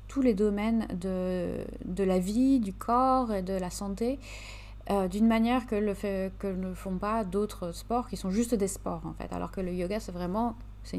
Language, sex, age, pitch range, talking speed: French, female, 30-49, 165-220 Hz, 215 wpm